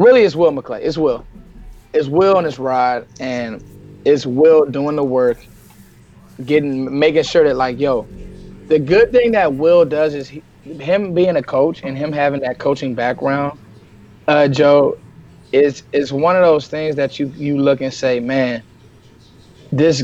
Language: English